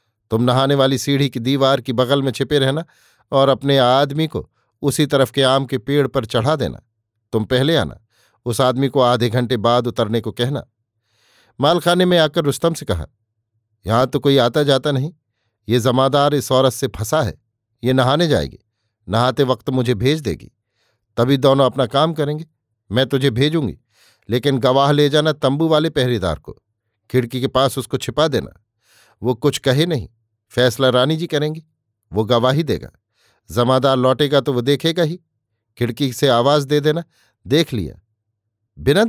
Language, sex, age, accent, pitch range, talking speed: Hindi, male, 50-69, native, 115-145 Hz, 170 wpm